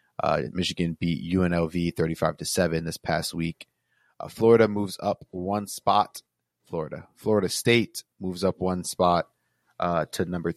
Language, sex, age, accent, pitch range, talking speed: English, male, 30-49, American, 85-100 Hz, 140 wpm